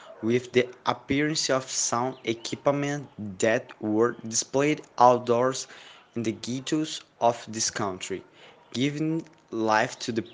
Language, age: Portuguese, 20-39